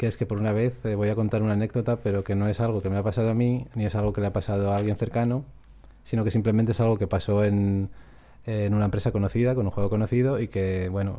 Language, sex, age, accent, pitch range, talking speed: Spanish, male, 20-39, Spanish, 100-115 Hz, 280 wpm